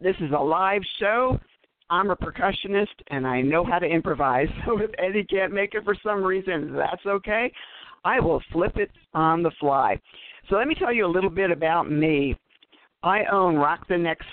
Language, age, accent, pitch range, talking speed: English, 50-69, American, 140-190 Hz, 195 wpm